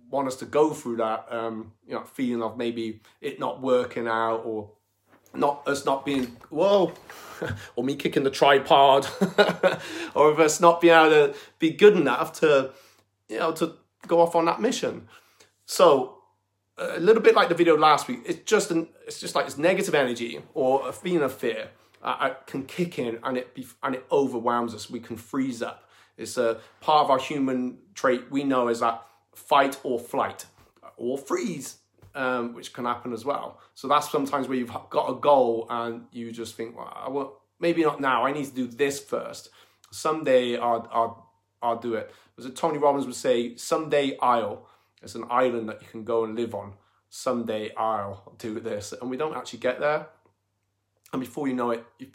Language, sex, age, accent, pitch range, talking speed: English, male, 30-49, British, 115-150 Hz, 195 wpm